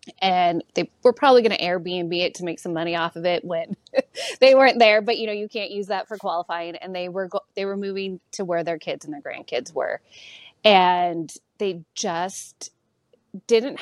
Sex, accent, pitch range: female, American, 170-215 Hz